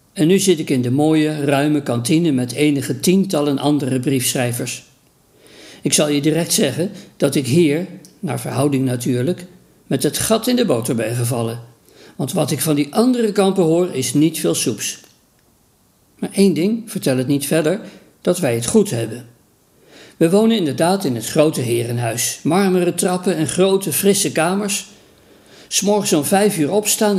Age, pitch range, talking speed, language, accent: 50-69, 135-185 Hz, 165 wpm, Dutch, Dutch